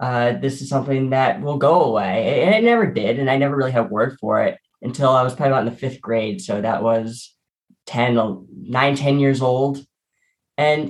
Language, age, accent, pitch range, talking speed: English, 10-29, American, 115-140 Hz, 210 wpm